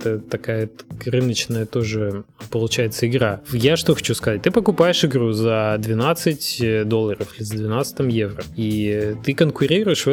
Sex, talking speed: male, 140 wpm